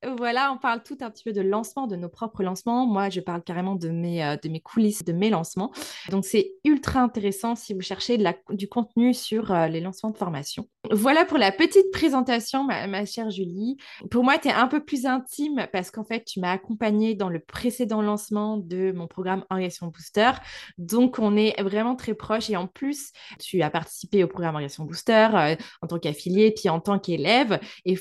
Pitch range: 190-240 Hz